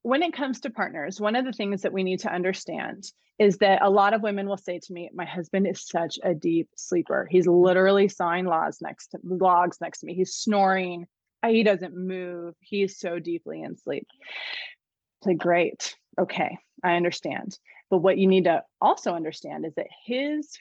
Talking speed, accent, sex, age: 185 wpm, American, female, 20-39